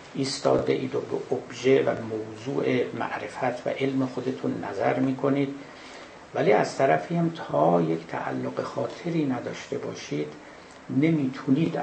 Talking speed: 115 wpm